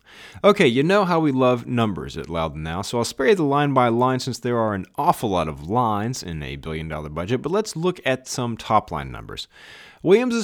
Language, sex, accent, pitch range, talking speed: English, male, American, 95-130 Hz, 215 wpm